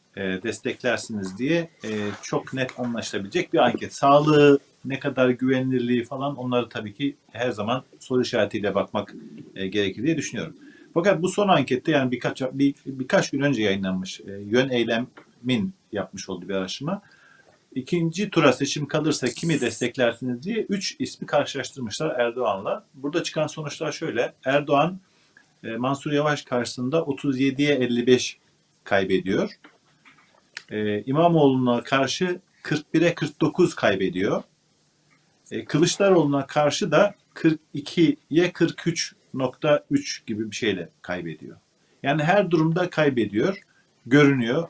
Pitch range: 120-155 Hz